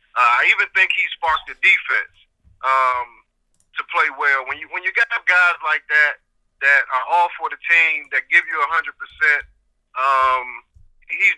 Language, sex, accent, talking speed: English, male, American, 175 wpm